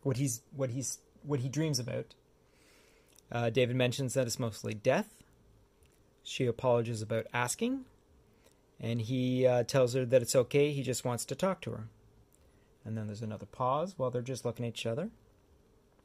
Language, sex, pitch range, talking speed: English, male, 115-135 Hz, 170 wpm